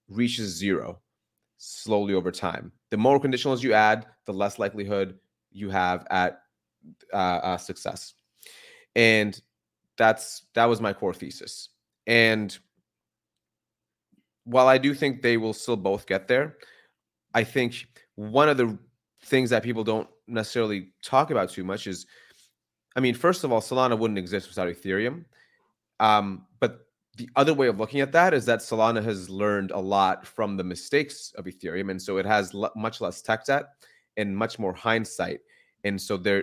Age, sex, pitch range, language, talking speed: 30-49, male, 95-115 Hz, English, 160 wpm